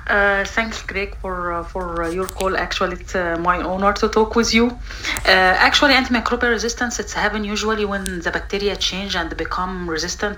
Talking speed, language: 185 wpm, English